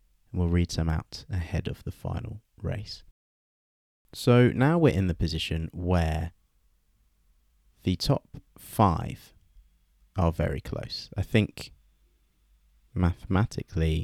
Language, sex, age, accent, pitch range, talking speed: English, male, 30-49, British, 80-100 Hz, 105 wpm